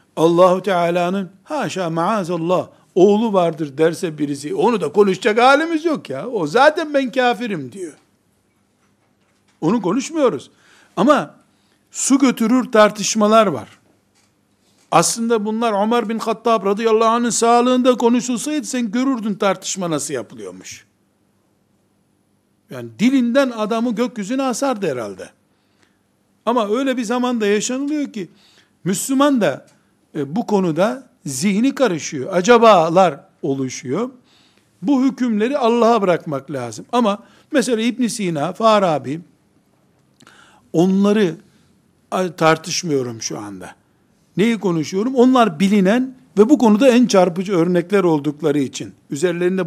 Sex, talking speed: male, 105 wpm